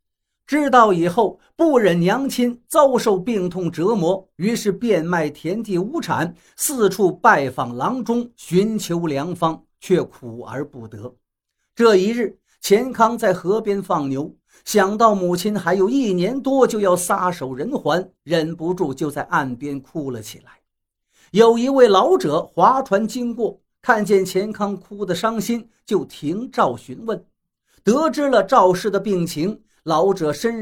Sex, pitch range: male, 160-225 Hz